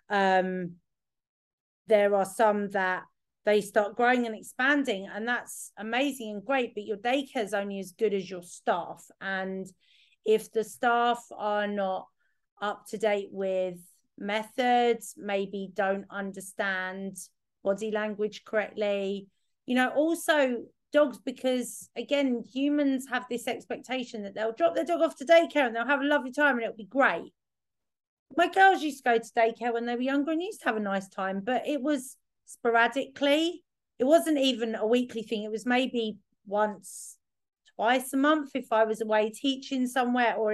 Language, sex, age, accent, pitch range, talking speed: English, female, 30-49, British, 205-265 Hz, 165 wpm